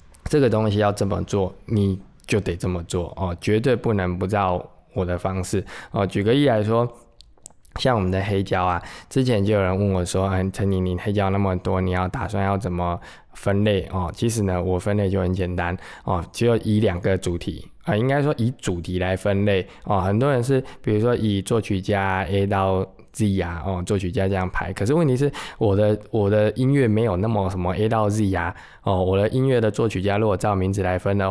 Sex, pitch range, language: male, 90-110 Hz, Chinese